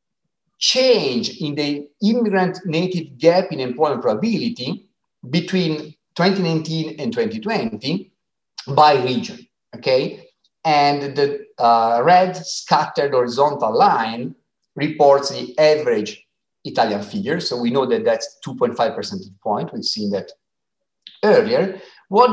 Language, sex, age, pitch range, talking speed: Italian, male, 50-69, 130-210 Hz, 110 wpm